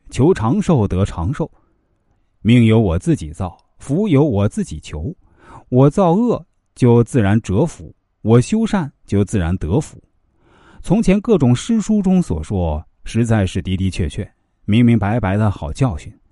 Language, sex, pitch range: Chinese, male, 95-135 Hz